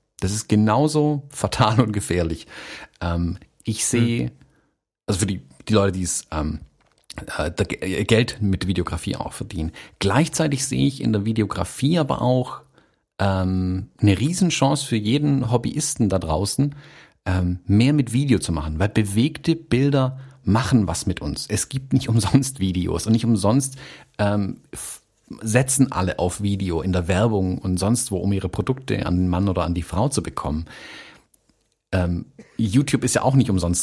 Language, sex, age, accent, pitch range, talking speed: German, male, 40-59, German, 95-135 Hz, 150 wpm